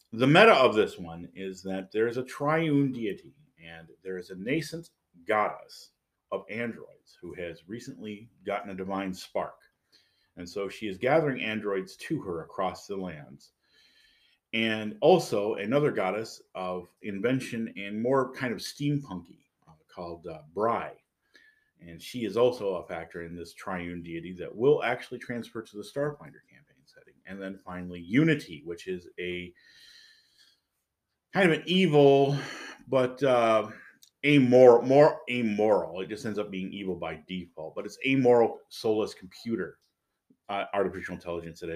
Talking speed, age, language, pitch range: 150 wpm, 40-59, English, 95-135 Hz